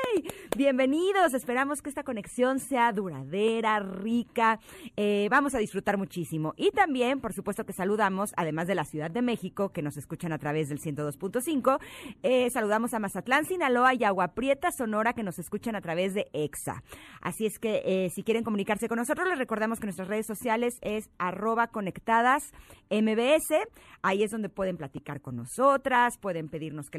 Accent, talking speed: Mexican, 170 wpm